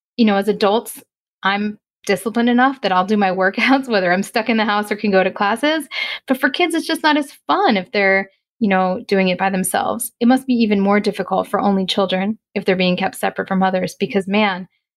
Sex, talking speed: female, 230 wpm